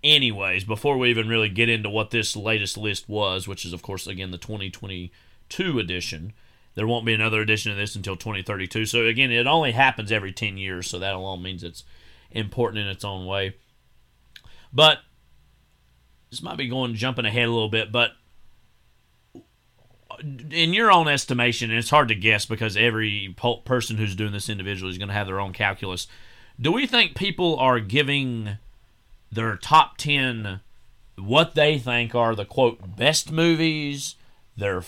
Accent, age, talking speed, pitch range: American, 30-49, 170 wpm, 100-130 Hz